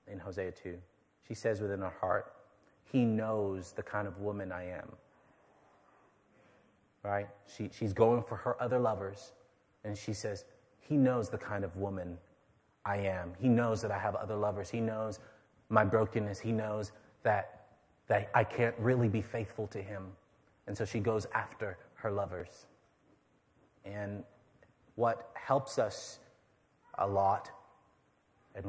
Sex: male